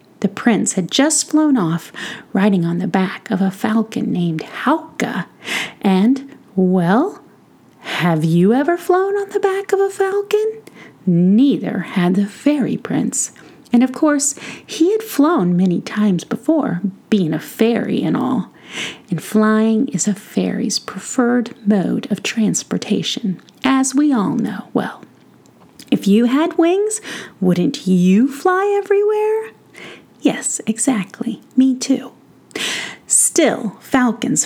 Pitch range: 200-285 Hz